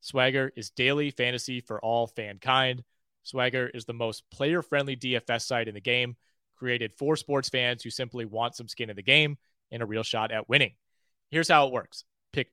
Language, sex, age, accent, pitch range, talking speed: English, male, 30-49, American, 120-145 Hz, 195 wpm